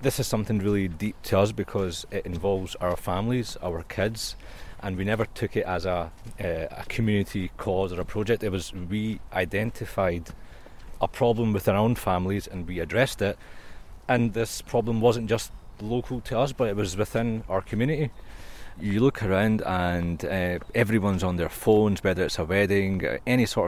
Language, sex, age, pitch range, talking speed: English, male, 30-49, 90-115 Hz, 180 wpm